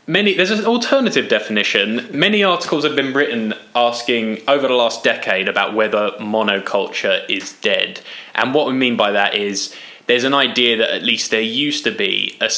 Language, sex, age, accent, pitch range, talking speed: English, male, 10-29, British, 105-130 Hz, 180 wpm